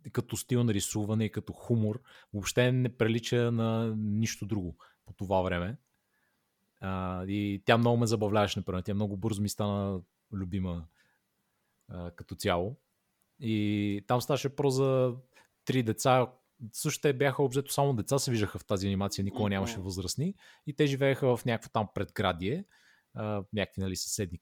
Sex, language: male, Bulgarian